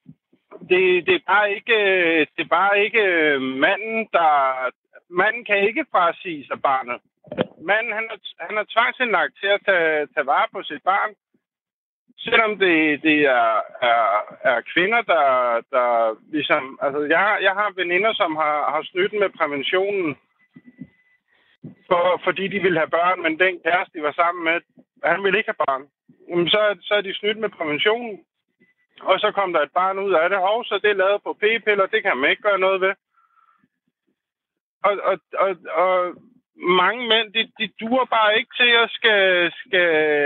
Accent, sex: native, male